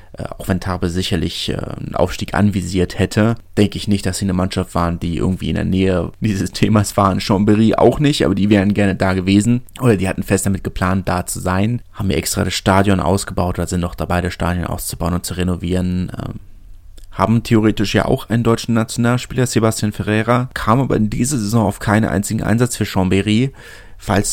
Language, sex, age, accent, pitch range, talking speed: German, male, 30-49, German, 95-110 Hz, 195 wpm